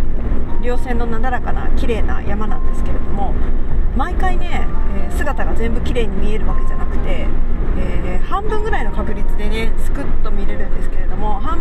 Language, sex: Japanese, female